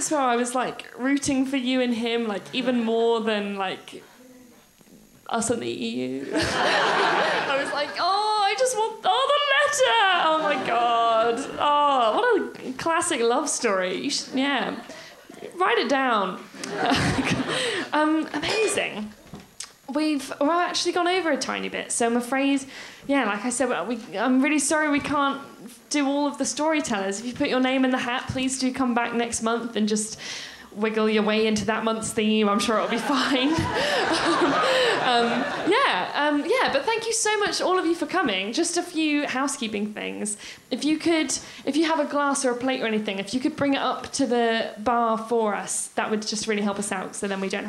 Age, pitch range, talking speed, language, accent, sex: 10-29, 220-290 Hz, 190 wpm, English, British, female